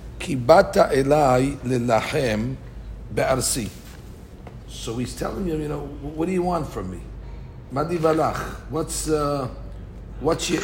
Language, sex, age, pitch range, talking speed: English, male, 60-79, 120-155 Hz, 120 wpm